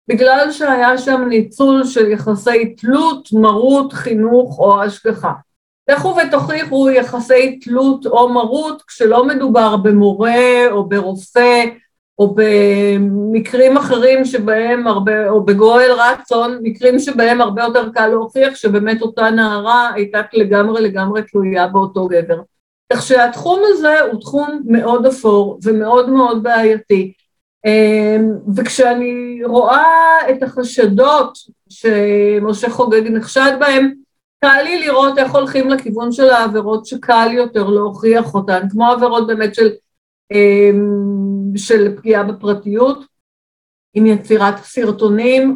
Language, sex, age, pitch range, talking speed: Hebrew, female, 50-69, 215-255 Hz, 115 wpm